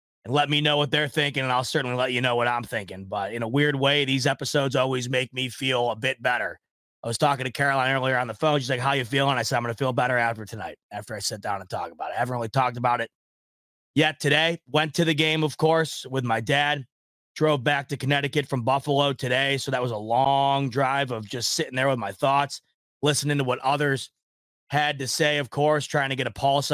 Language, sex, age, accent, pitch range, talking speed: English, male, 30-49, American, 125-145 Hz, 255 wpm